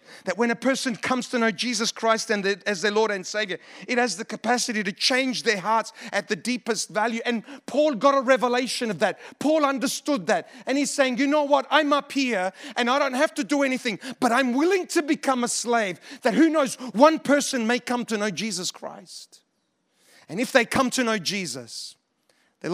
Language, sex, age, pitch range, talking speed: English, male, 40-59, 195-255 Hz, 210 wpm